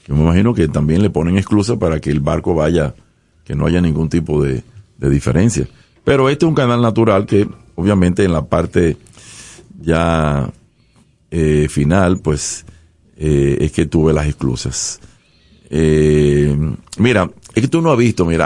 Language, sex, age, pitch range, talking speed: Spanish, male, 50-69, 75-105 Hz, 165 wpm